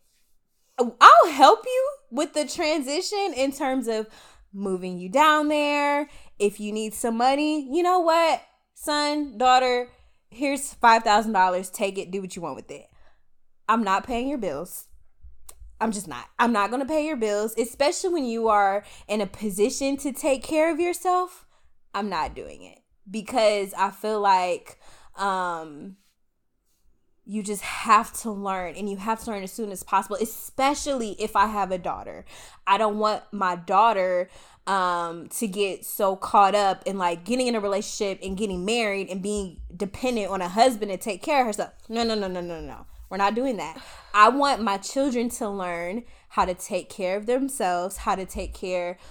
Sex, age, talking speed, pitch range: female, 20-39, 180 wpm, 190-260 Hz